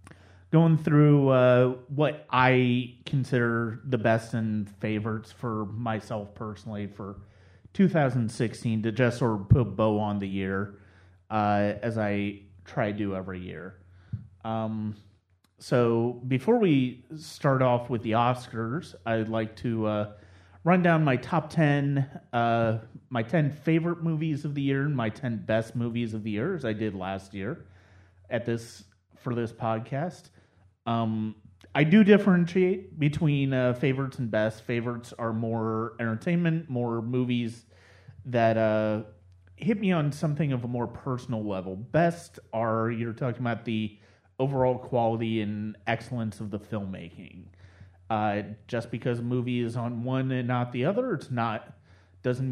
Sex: male